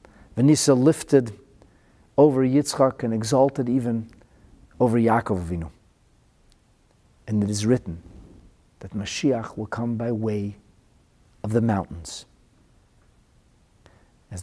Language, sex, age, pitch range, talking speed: English, male, 50-69, 100-120 Hz, 95 wpm